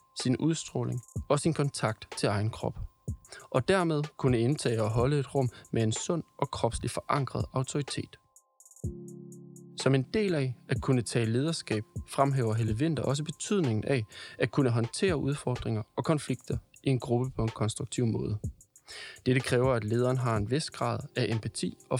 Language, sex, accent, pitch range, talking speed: Danish, male, native, 115-145 Hz, 165 wpm